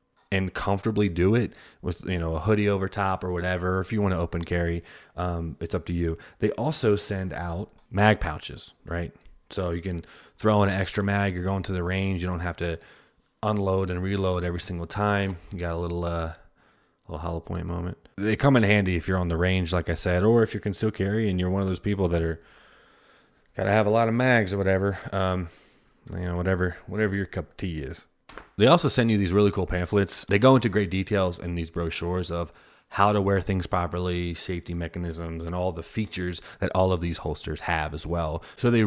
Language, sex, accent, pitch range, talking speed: English, male, American, 85-105 Hz, 225 wpm